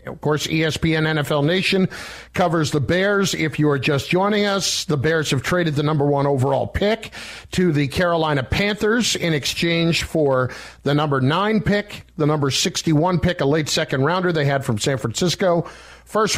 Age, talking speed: 50-69, 175 wpm